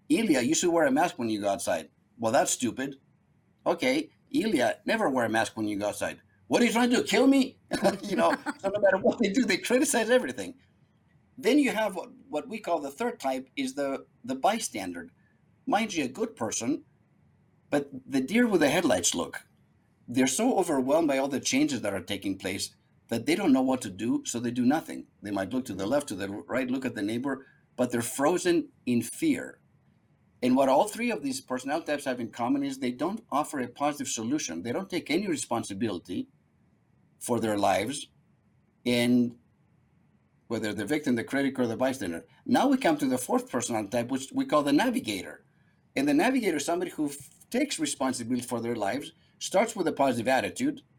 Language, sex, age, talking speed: English, male, 50-69, 205 wpm